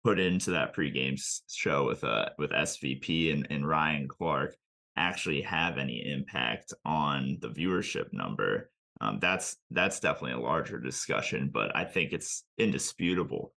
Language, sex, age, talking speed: English, male, 20-39, 150 wpm